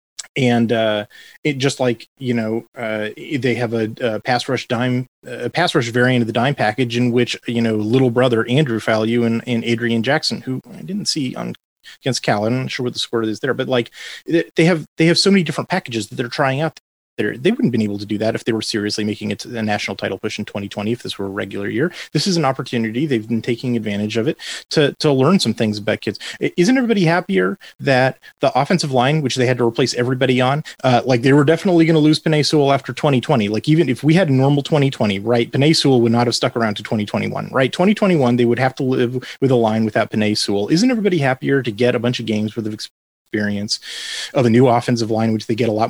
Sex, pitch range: male, 110-135 Hz